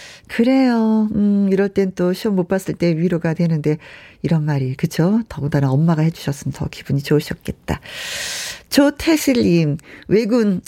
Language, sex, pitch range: Korean, female, 170-240 Hz